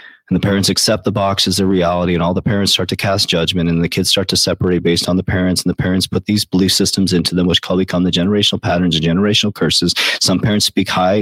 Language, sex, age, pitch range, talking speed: English, male, 30-49, 85-105 Hz, 260 wpm